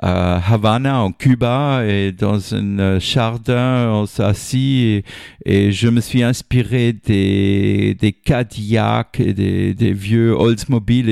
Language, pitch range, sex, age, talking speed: French, 105-130 Hz, male, 50-69, 135 wpm